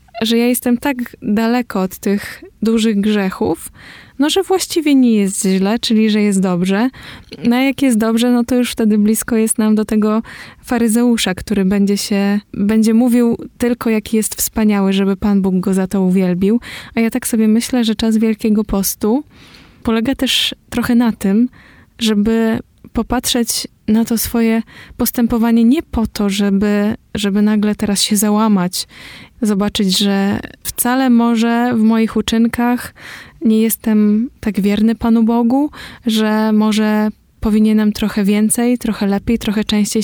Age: 20-39